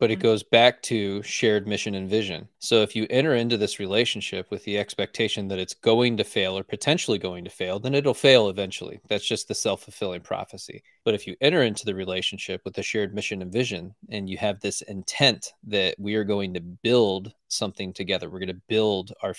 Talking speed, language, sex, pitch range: 215 wpm, English, male, 95-110 Hz